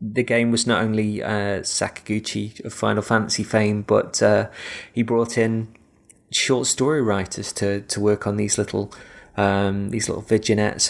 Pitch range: 100-115 Hz